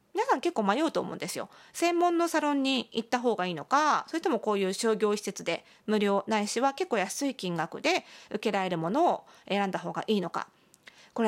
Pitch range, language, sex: 195-280 Hz, Japanese, female